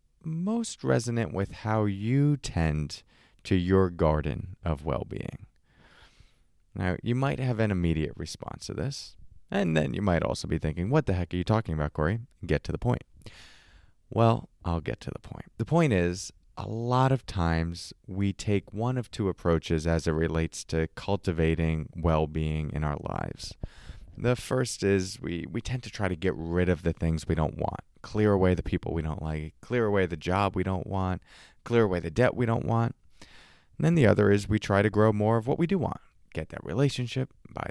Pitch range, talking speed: 85-115 Hz, 195 wpm